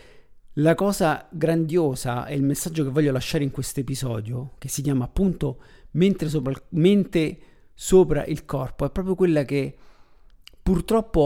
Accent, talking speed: native, 145 wpm